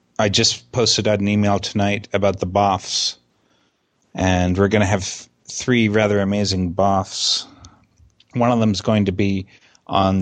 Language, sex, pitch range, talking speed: English, male, 95-105 Hz, 160 wpm